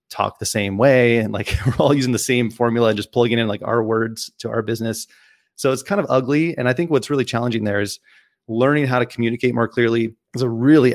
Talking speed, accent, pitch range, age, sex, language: 240 wpm, American, 110-130 Hz, 30-49, male, English